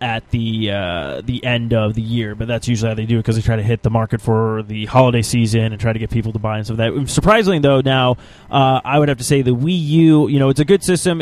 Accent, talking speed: American, 295 wpm